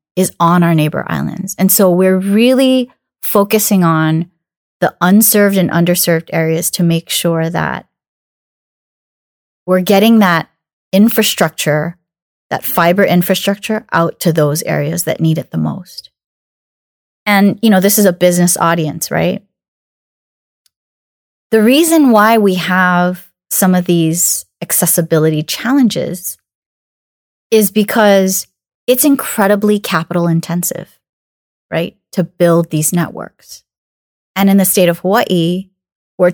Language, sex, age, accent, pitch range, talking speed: English, female, 30-49, American, 165-200 Hz, 120 wpm